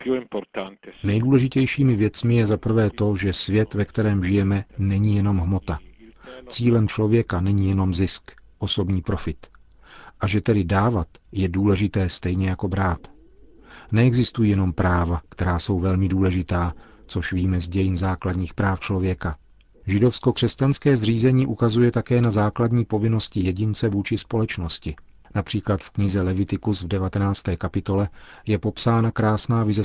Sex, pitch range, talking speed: male, 90-110 Hz, 130 wpm